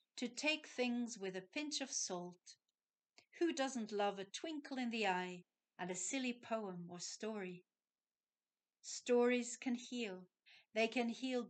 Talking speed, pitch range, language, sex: 145 wpm, 185-240 Hz, English, female